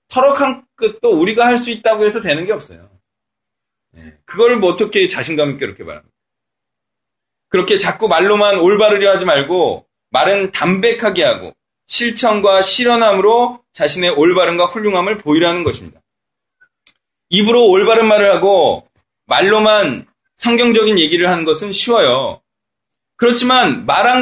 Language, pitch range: Korean, 195-255 Hz